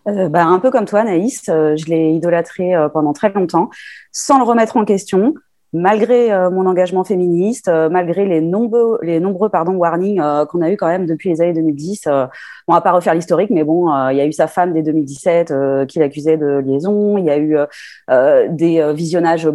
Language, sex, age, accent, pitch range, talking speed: French, female, 30-49, French, 150-195 Hz, 225 wpm